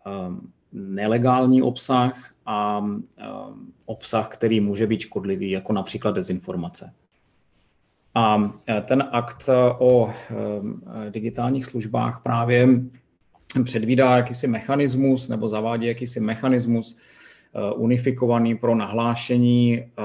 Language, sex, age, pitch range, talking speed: Czech, male, 30-49, 110-125 Hz, 85 wpm